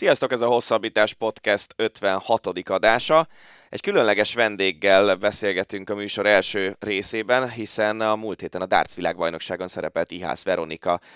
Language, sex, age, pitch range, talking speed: Hungarian, male, 20-39, 90-110 Hz, 135 wpm